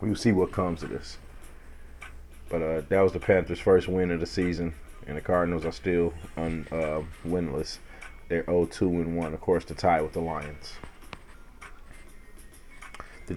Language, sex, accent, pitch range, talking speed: English, male, American, 80-100 Hz, 155 wpm